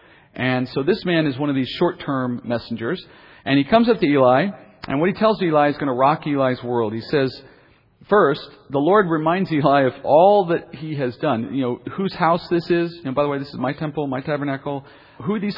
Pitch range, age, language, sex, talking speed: 125-170 Hz, 40-59, English, male, 230 wpm